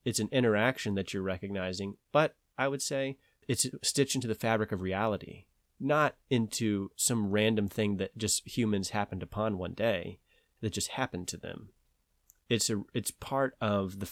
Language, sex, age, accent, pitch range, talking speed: English, male, 30-49, American, 100-120 Hz, 170 wpm